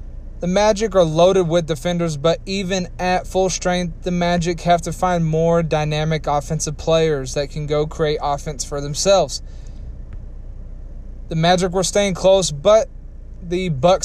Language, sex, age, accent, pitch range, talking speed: English, male, 20-39, American, 150-175 Hz, 150 wpm